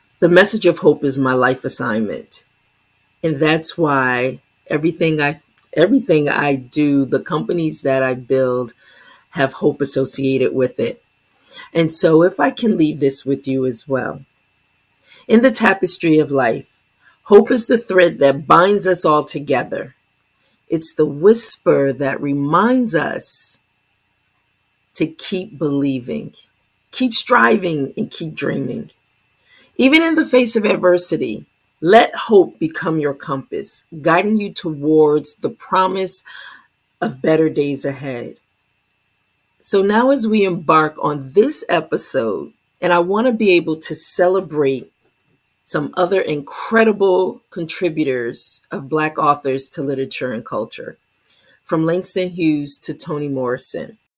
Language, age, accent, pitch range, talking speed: English, 40-59, American, 140-185 Hz, 130 wpm